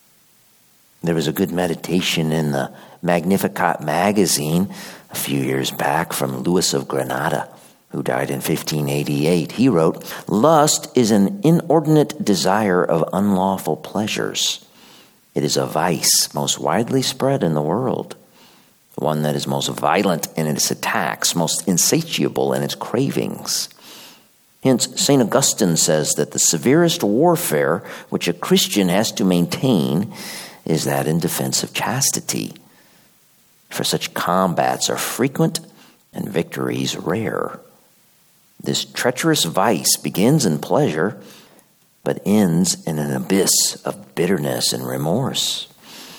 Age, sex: 50-69, male